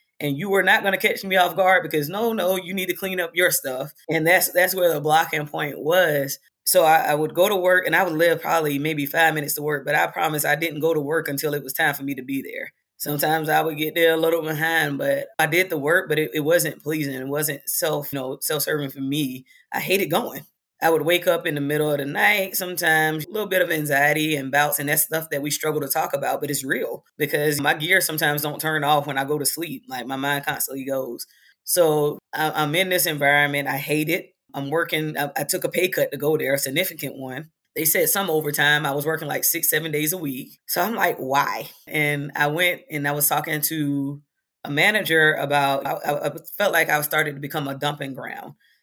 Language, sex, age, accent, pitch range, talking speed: English, female, 20-39, American, 145-170 Hz, 245 wpm